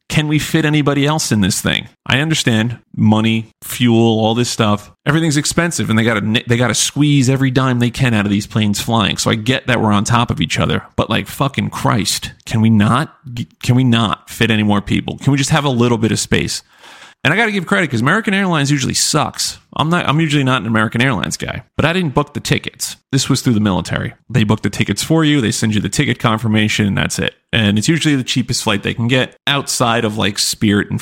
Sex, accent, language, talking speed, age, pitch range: male, American, English, 245 wpm, 30-49, 110-145 Hz